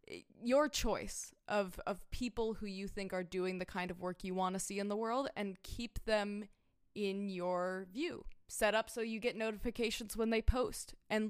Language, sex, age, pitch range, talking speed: English, female, 20-39, 195-245 Hz, 195 wpm